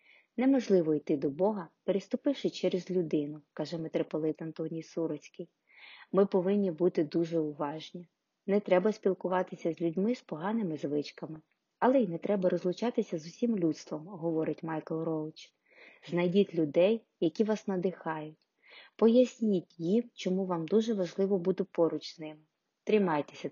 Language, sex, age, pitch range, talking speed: Ukrainian, female, 20-39, 165-210 Hz, 130 wpm